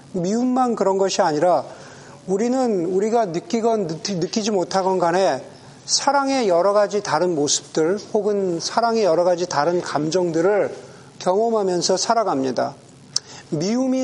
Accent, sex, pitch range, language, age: native, male, 175-230 Hz, Korean, 40-59